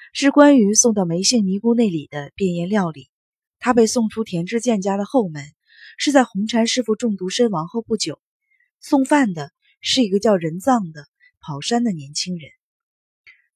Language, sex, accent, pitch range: Chinese, female, native, 170-240 Hz